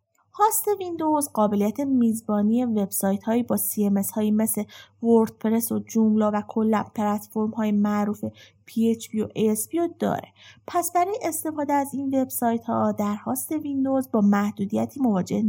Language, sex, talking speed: Persian, female, 130 wpm